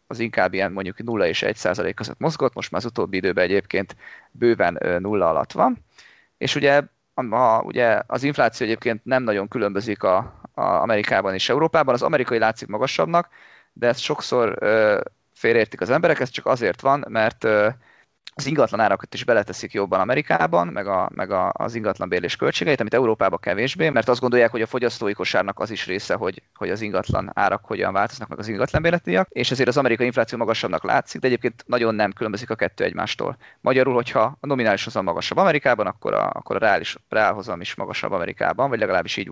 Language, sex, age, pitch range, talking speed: Hungarian, male, 20-39, 105-135 Hz, 190 wpm